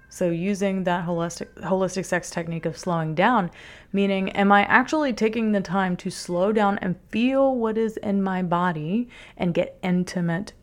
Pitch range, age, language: 175-200 Hz, 30-49, English